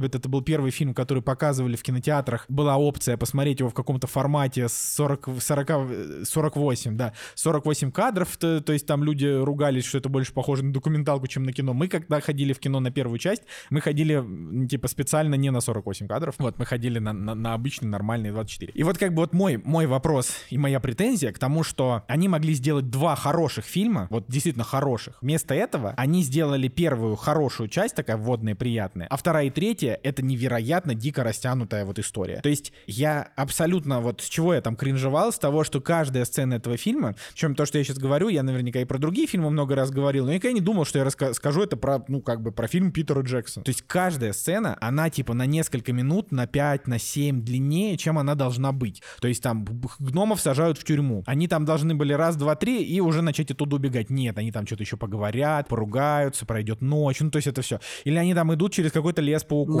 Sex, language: male, Russian